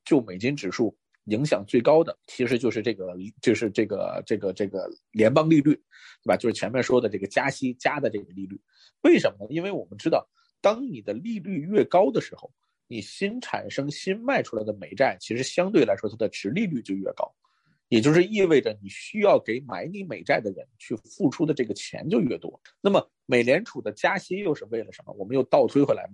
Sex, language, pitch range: male, Chinese, 110-175 Hz